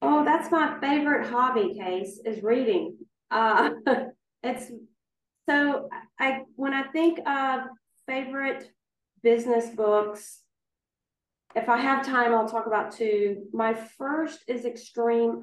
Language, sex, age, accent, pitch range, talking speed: English, female, 40-59, American, 220-260 Hz, 120 wpm